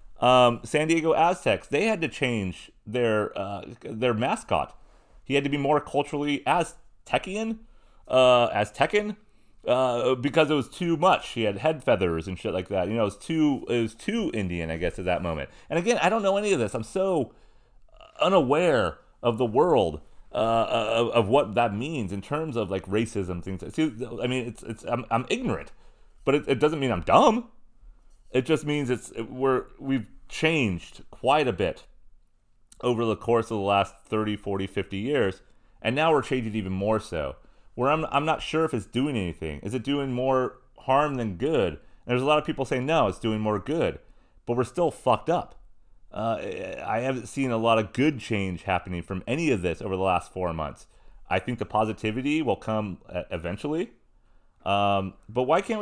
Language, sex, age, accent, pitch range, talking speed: English, male, 30-49, American, 105-145 Hz, 195 wpm